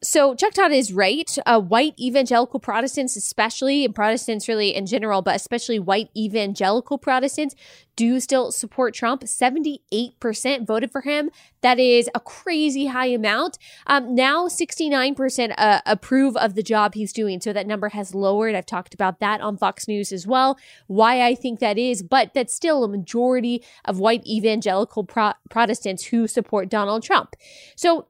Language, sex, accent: English, female, American